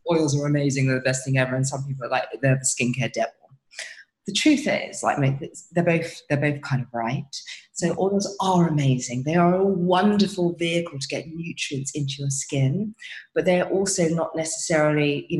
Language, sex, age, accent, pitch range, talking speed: English, female, 20-39, British, 130-155 Hz, 195 wpm